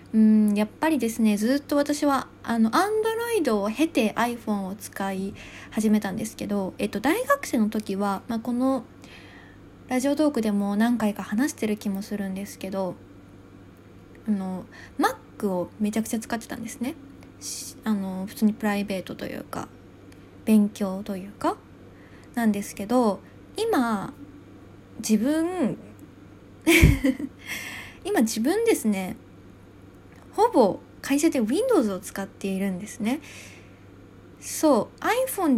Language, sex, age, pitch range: Japanese, female, 20-39, 195-265 Hz